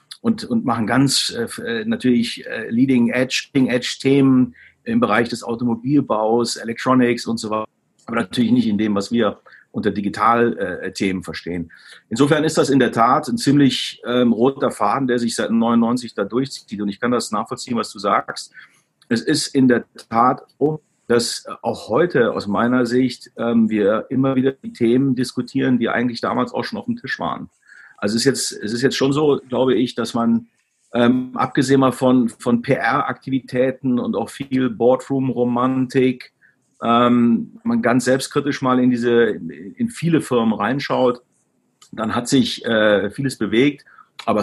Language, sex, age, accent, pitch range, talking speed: German, male, 40-59, German, 115-135 Hz, 165 wpm